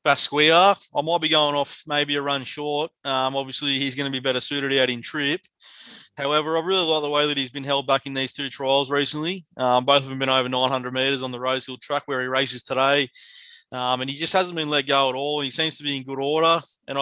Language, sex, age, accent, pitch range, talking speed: English, male, 20-39, Australian, 135-150 Hz, 255 wpm